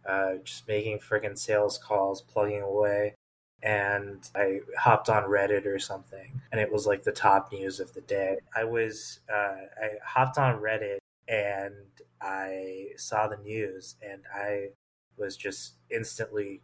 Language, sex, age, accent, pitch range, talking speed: English, male, 20-39, American, 95-110 Hz, 150 wpm